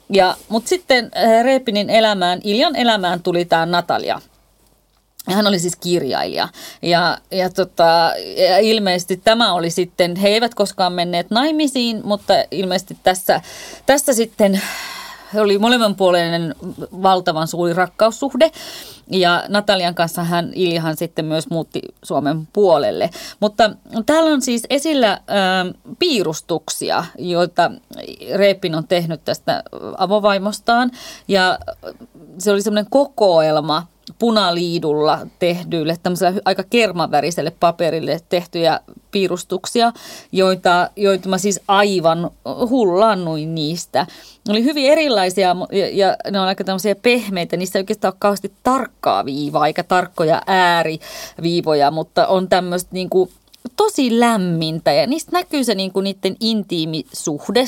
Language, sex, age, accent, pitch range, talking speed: Finnish, female, 30-49, native, 175-230 Hz, 115 wpm